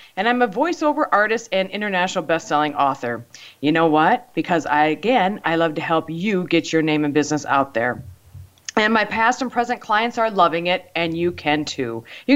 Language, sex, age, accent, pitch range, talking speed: English, female, 40-59, American, 150-230 Hz, 200 wpm